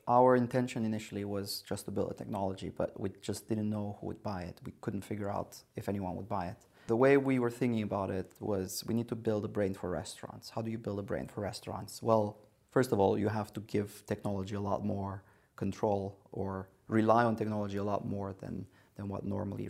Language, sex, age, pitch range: English, male, 30-49, 100-115 Hz